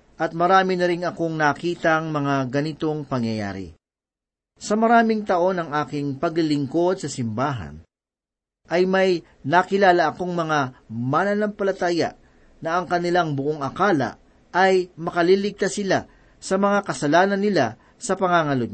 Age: 40-59